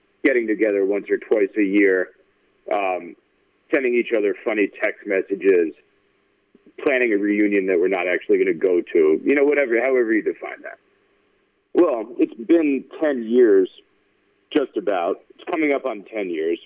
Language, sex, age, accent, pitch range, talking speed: English, male, 40-59, American, 350-400 Hz, 160 wpm